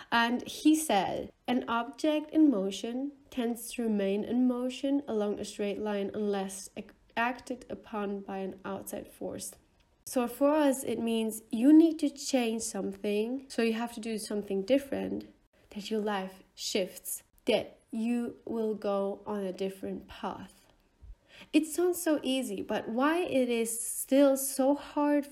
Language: English